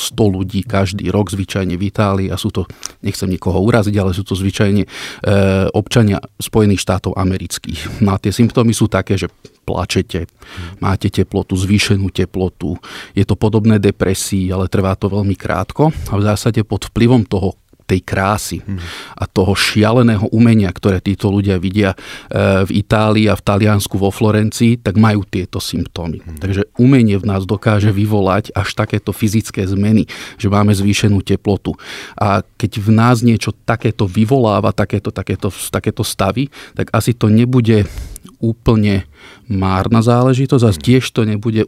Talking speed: 155 wpm